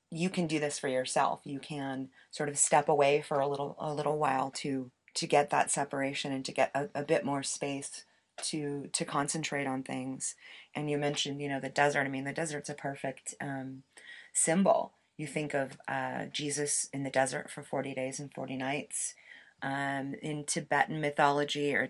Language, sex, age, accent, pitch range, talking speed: English, female, 30-49, American, 135-150 Hz, 190 wpm